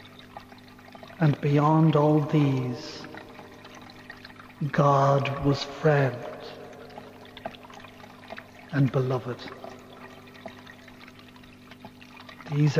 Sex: male